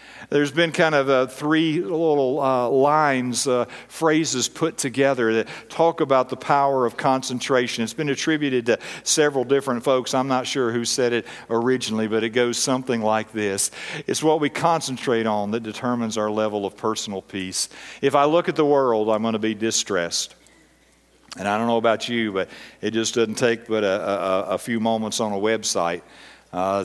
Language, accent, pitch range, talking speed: English, American, 105-125 Hz, 190 wpm